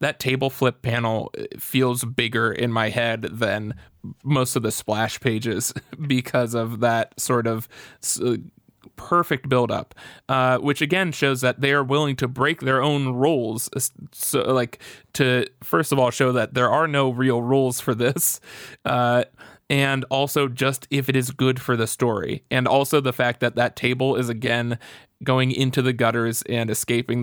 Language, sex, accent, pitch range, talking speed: English, male, American, 120-135 Hz, 165 wpm